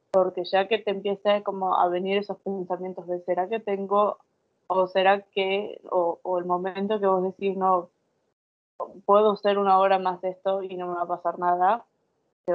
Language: Spanish